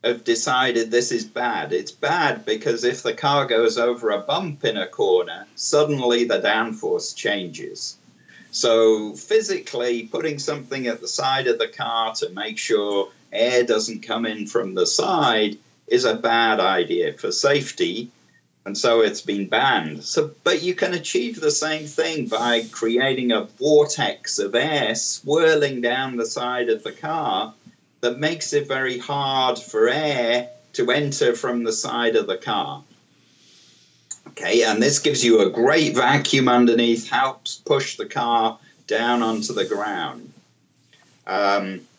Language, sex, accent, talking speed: English, male, British, 155 wpm